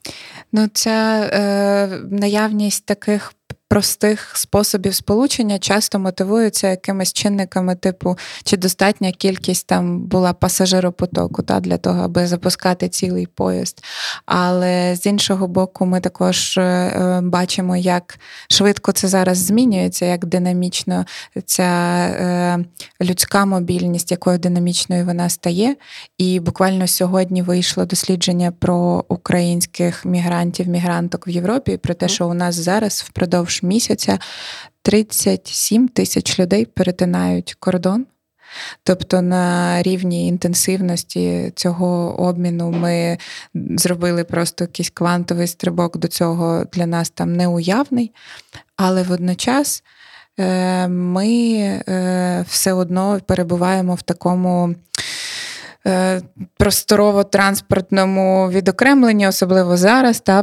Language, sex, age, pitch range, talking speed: Ukrainian, female, 20-39, 175-195 Hz, 105 wpm